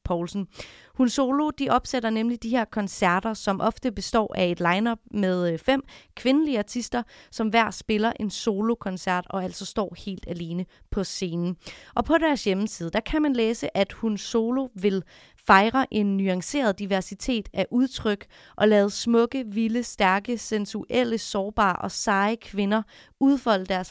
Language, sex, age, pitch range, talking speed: Danish, female, 30-49, 195-245 Hz, 155 wpm